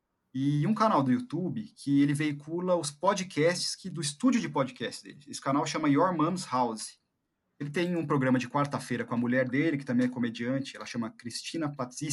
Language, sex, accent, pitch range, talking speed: Portuguese, male, Brazilian, 125-155 Hz, 195 wpm